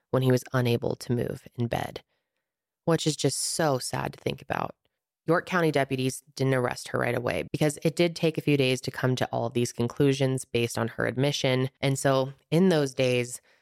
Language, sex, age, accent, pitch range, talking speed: English, female, 20-39, American, 130-155 Hz, 205 wpm